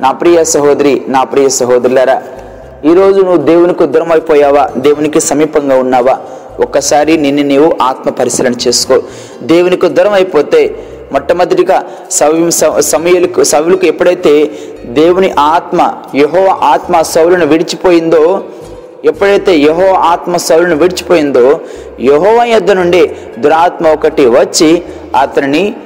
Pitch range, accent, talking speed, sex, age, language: 150-185 Hz, native, 100 wpm, male, 30-49, Telugu